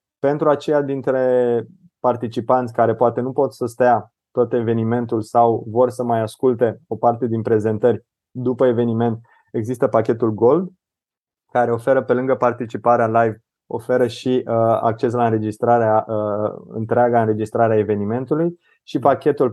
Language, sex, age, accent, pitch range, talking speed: Romanian, male, 20-39, native, 115-130 Hz, 130 wpm